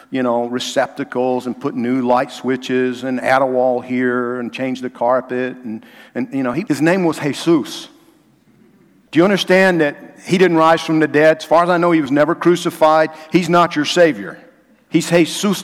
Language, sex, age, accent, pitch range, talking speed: English, male, 50-69, American, 110-165 Hz, 190 wpm